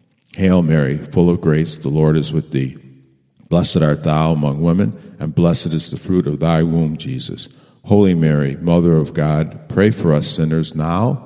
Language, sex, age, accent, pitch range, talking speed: English, male, 50-69, American, 75-90 Hz, 180 wpm